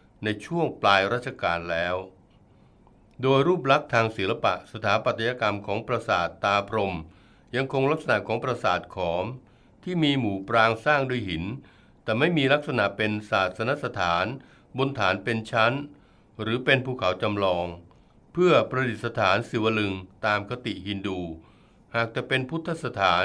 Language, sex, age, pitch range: Thai, male, 60-79, 100-135 Hz